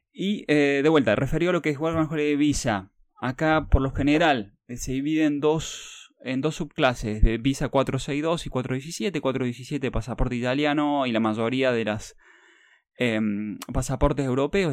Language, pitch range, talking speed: Spanish, 110-145 Hz, 160 wpm